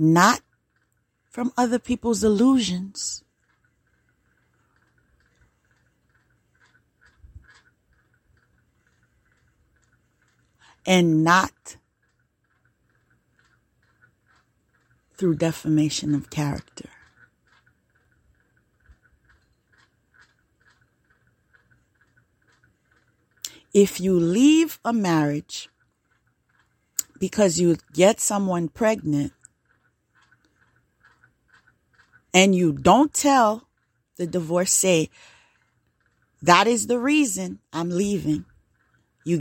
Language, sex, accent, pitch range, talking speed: English, female, American, 140-215 Hz, 50 wpm